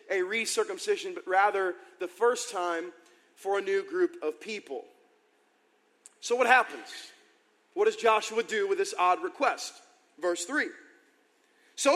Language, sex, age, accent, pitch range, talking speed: English, male, 40-59, American, 245-395 Hz, 135 wpm